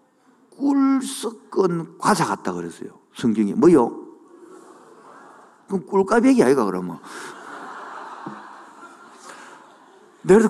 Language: Korean